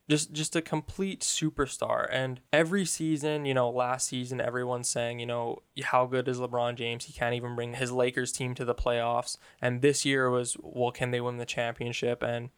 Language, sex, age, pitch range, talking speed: English, male, 10-29, 120-140 Hz, 200 wpm